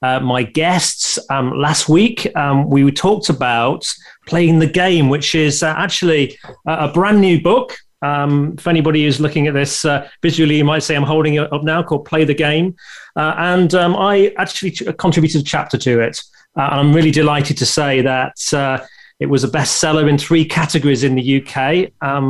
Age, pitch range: 30-49, 140-165 Hz